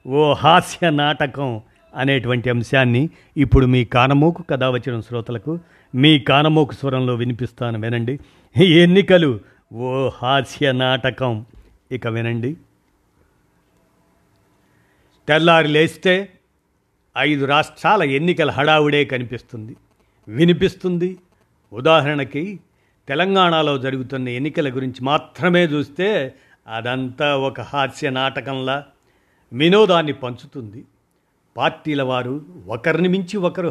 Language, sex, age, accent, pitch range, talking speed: Telugu, male, 50-69, native, 125-160 Hz, 80 wpm